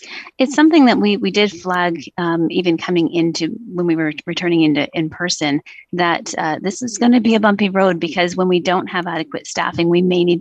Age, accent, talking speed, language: 30-49, American, 215 wpm, English